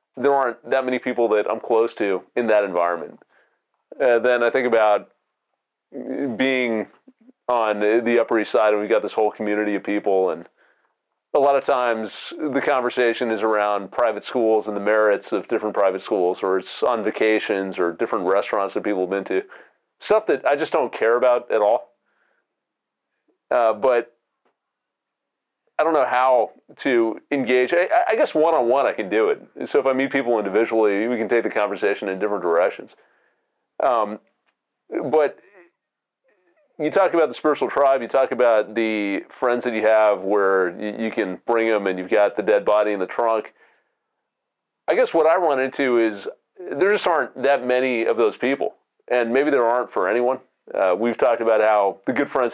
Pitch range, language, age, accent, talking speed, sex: 105-125 Hz, English, 30-49, American, 185 wpm, male